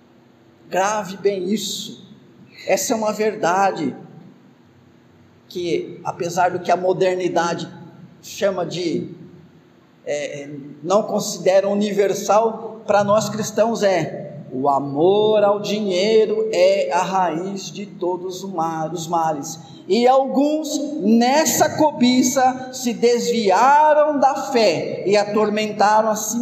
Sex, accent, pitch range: male, Brazilian, 185-260 Hz